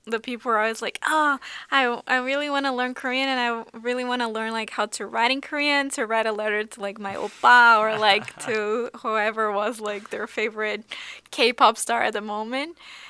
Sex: female